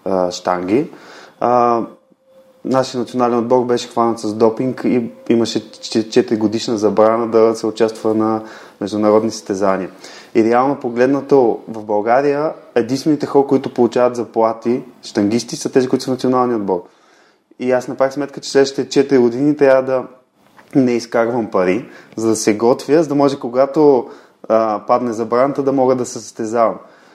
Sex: male